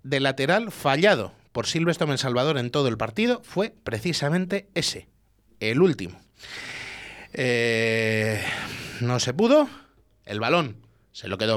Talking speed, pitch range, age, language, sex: 130 wpm, 115-190 Hz, 30-49, Spanish, male